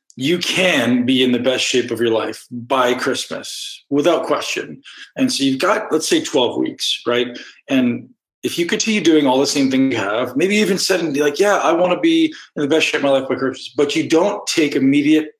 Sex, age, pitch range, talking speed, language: male, 40-59, 125-165 Hz, 235 wpm, English